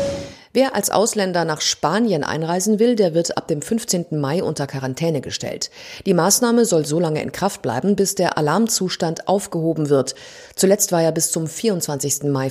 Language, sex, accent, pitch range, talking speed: German, female, German, 155-205 Hz, 175 wpm